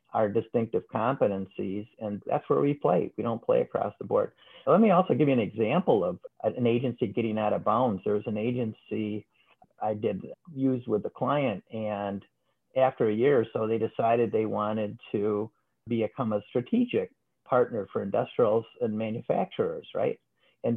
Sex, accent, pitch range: male, American, 110-175 Hz